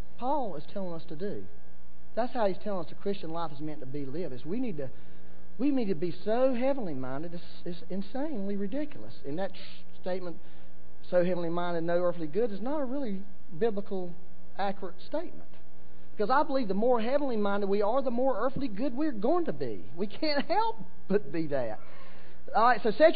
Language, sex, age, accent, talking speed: English, male, 40-59, American, 200 wpm